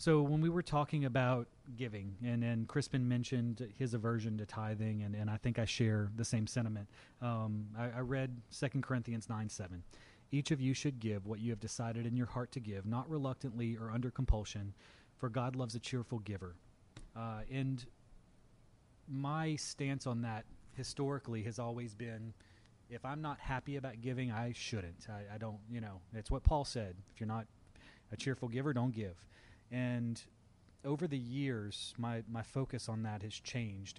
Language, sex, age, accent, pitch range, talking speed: English, male, 30-49, American, 105-125 Hz, 180 wpm